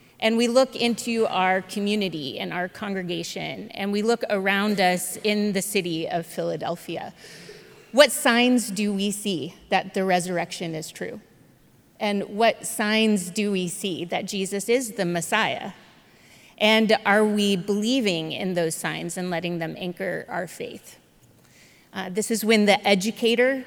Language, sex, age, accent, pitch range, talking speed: English, female, 30-49, American, 185-235 Hz, 150 wpm